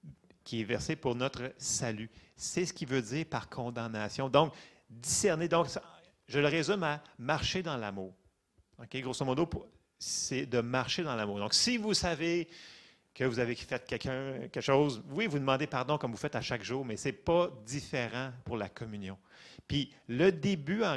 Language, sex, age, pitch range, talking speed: French, male, 30-49, 115-150 Hz, 185 wpm